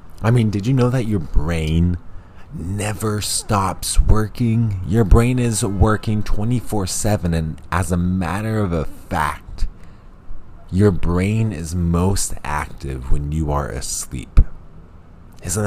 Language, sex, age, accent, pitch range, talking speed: English, male, 20-39, American, 80-100 Hz, 130 wpm